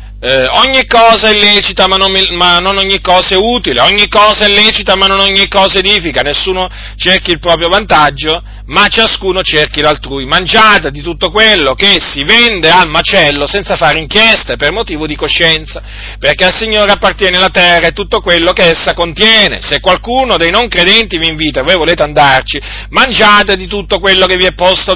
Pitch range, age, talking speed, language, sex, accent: 155-205 Hz, 40-59, 185 wpm, Italian, male, native